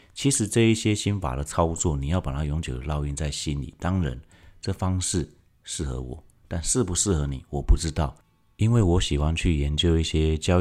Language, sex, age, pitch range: Chinese, male, 40-59, 75-90 Hz